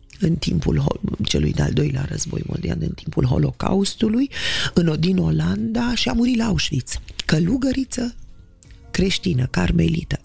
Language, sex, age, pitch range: Romanian, female, 30-49, 140-210 Hz